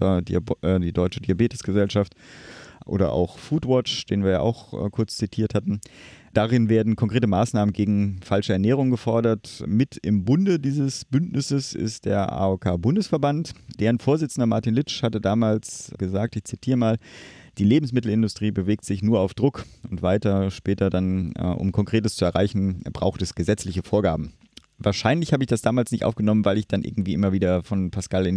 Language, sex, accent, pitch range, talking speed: German, male, German, 95-125 Hz, 155 wpm